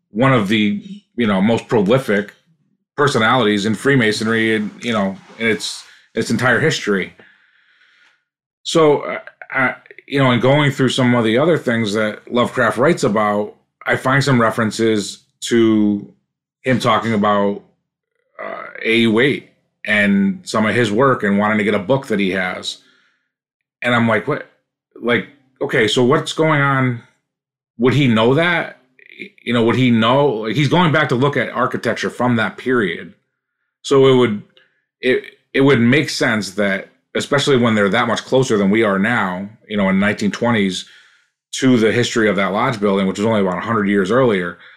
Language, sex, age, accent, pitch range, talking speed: English, male, 30-49, American, 105-140 Hz, 170 wpm